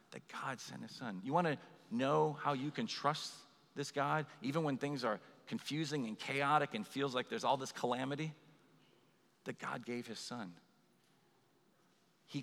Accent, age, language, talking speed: American, 40-59, English, 165 wpm